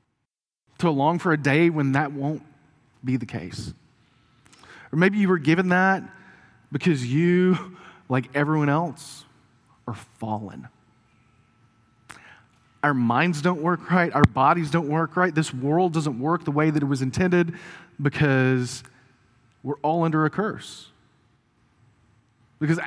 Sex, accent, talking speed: male, American, 135 wpm